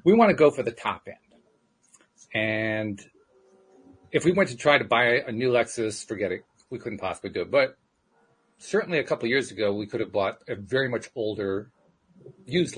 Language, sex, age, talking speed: English, male, 40-59, 195 wpm